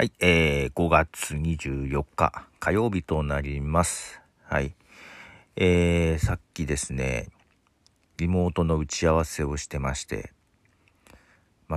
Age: 50-69